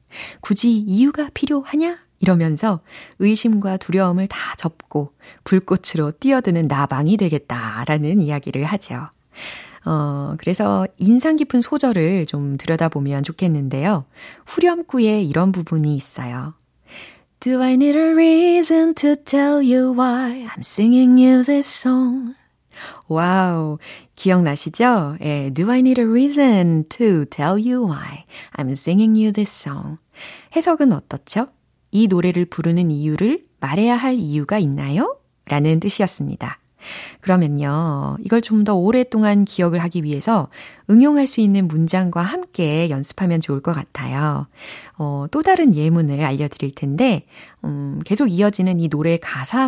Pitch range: 155-245 Hz